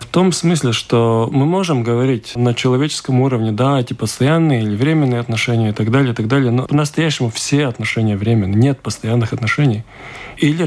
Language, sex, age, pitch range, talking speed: Russian, male, 20-39, 120-150 Hz, 165 wpm